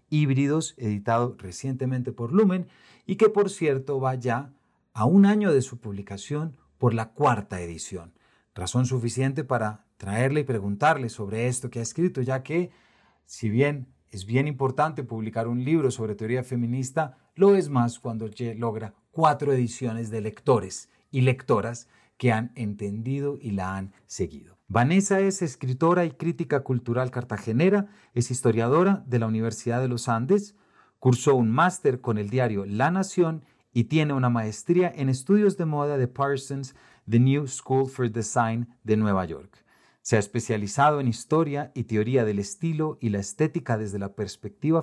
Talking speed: 160 wpm